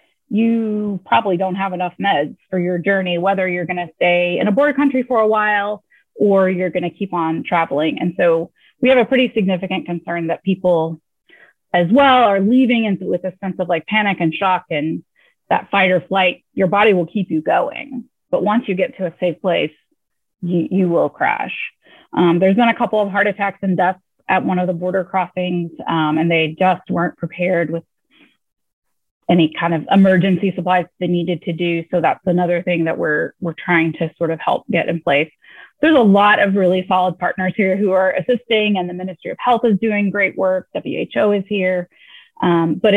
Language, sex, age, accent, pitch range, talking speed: English, female, 30-49, American, 175-210 Hz, 205 wpm